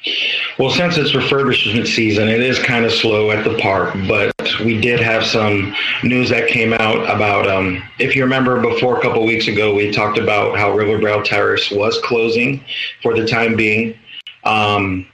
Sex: male